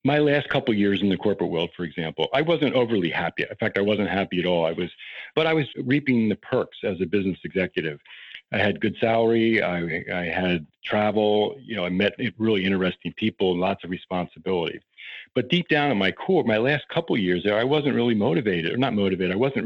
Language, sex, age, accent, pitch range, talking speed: English, male, 50-69, American, 95-125 Hz, 225 wpm